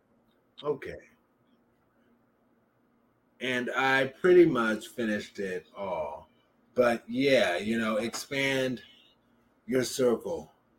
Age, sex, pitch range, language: 30-49, male, 125-160 Hz, English